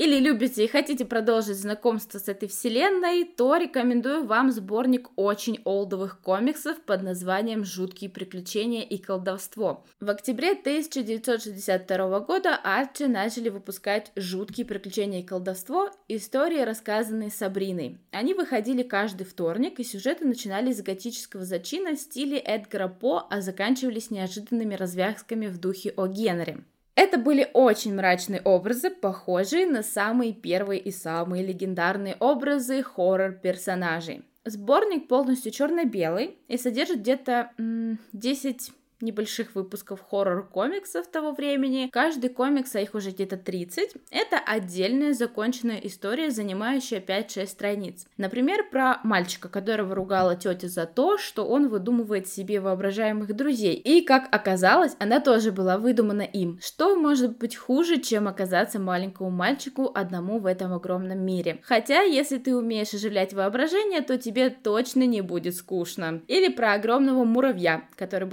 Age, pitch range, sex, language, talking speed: 20-39, 195-260 Hz, female, Russian, 130 wpm